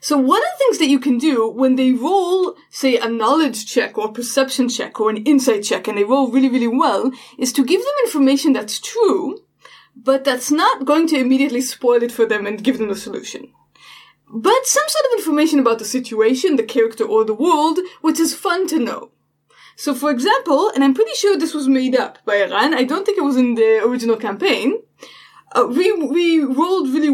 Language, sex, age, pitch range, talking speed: English, female, 20-39, 255-370 Hz, 215 wpm